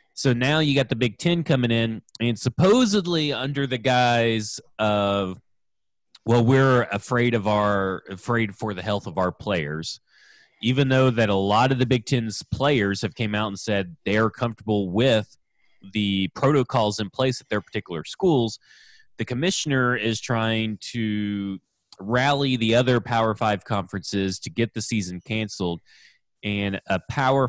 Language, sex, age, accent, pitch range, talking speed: English, male, 30-49, American, 100-125 Hz, 160 wpm